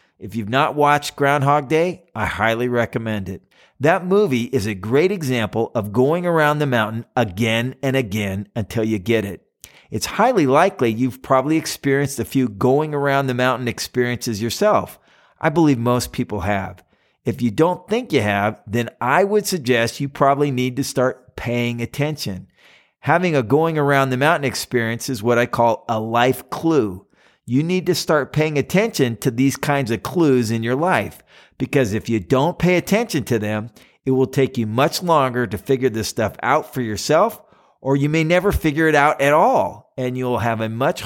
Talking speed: 185 wpm